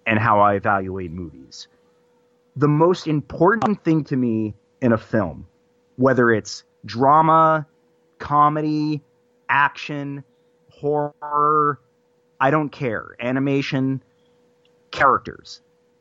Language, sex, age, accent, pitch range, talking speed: English, male, 30-49, American, 120-155 Hz, 95 wpm